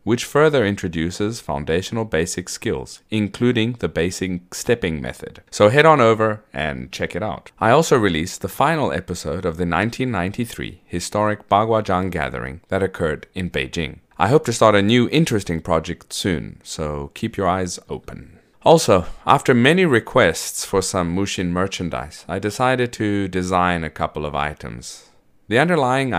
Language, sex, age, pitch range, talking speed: English, male, 30-49, 85-110 Hz, 155 wpm